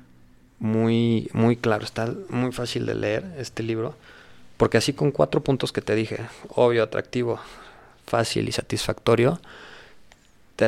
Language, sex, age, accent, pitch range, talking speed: Spanish, male, 20-39, Mexican, 105-115 Hz, 135 wpm